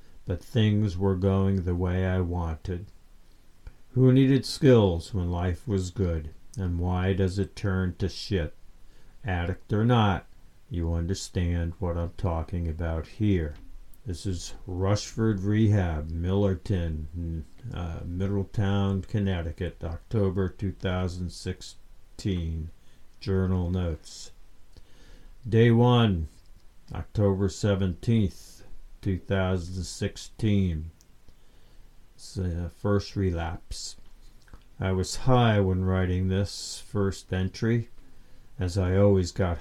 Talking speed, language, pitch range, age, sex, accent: 95 wpm, English, 85-100 Hz, 60-79, male, American